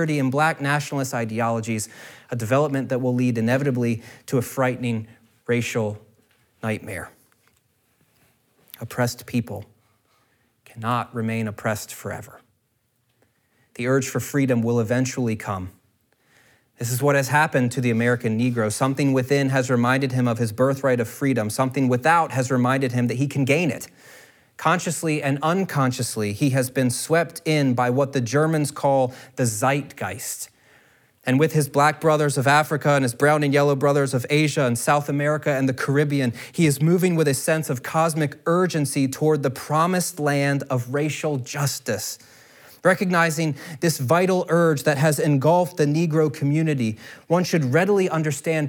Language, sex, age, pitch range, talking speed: English, male, 30-49, 120-150 Hz, 150 wpm